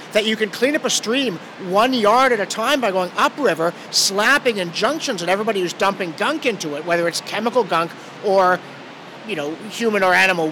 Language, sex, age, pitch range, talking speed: English, male, 50-69, 195-270 Hz, 200 wpm